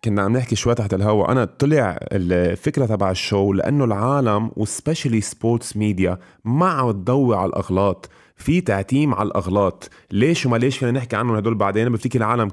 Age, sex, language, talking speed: 20-39, male, Arabic, 170 wpm